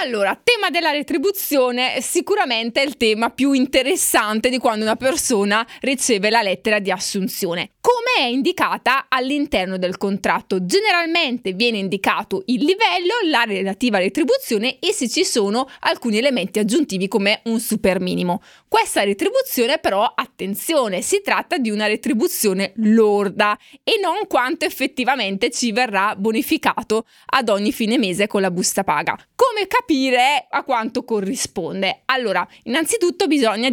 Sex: female